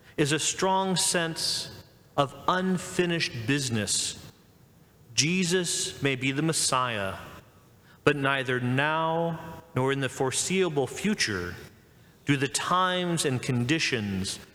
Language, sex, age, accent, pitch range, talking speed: English, male, 40-59, American, 130-165 Hz, 105 wpm